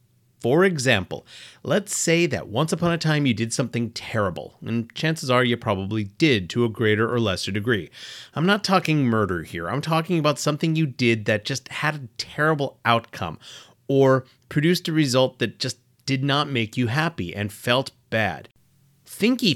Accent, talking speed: American, 175 wpm